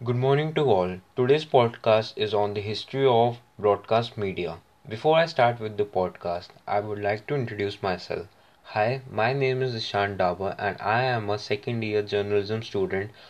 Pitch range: 100-125 Hz